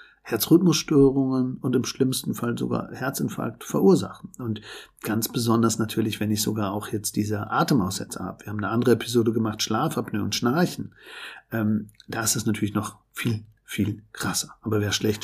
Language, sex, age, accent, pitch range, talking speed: German, male, 50-69, German, 110-135 Hz, 160 wpm